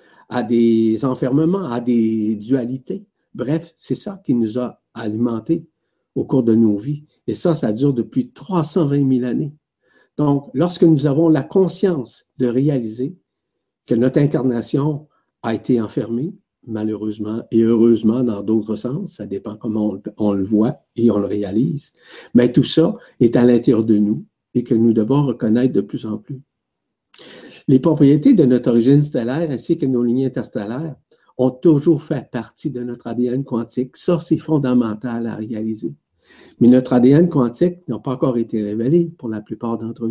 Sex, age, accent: male, 60-79, Canadian